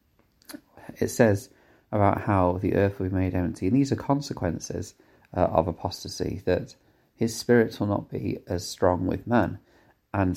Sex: male